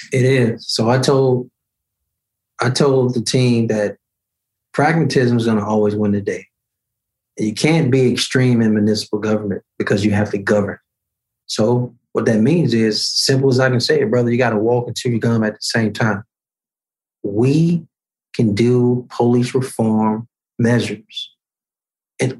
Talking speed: 160 wpm